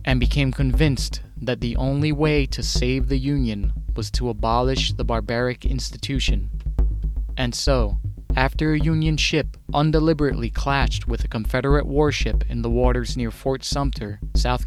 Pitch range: 115-140 Hz